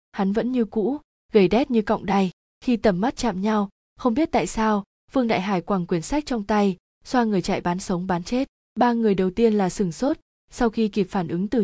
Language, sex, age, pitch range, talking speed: Vietnamese, female, 20-39, 190-225 Hz, 235 wpm